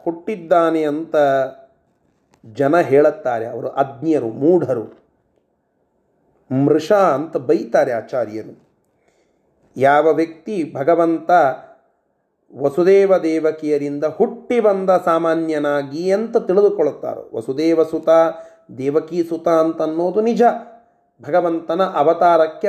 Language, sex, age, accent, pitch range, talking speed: Kannada, male, 30-49, native, 160-210 Hz, 70 wpm